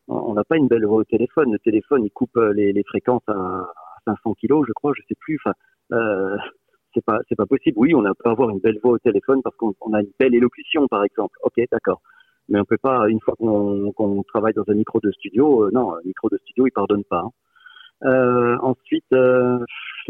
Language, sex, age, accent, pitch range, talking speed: French, male, 40-59, French, 110-135 Hz, 235 wpm